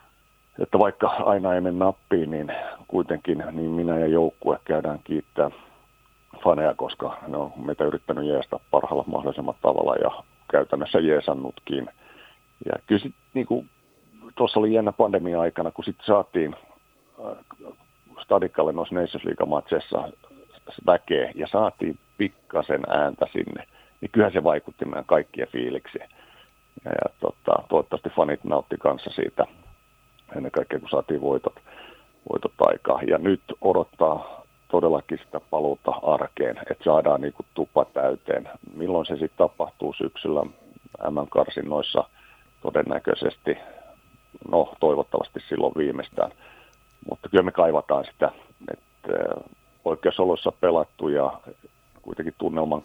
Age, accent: 50-69, native